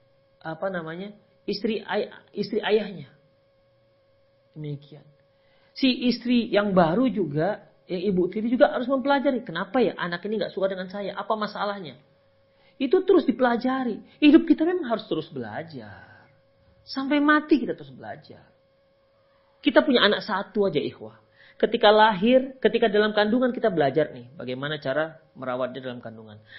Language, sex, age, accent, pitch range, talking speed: Indonesian, male, 40-59, native, 135-230 Hz, 140 wpm